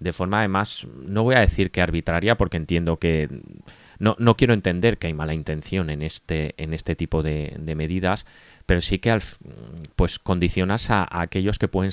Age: 20-39